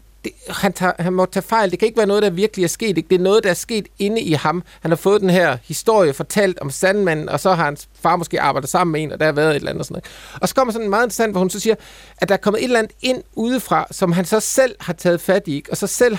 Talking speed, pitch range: 320 wpm, 165-210 Hz